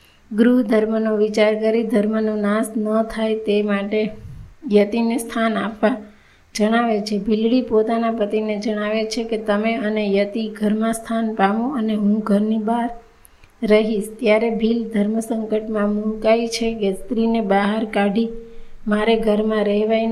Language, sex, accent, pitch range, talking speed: Gujarati, female, native, 210-230 Hz, 70 wpm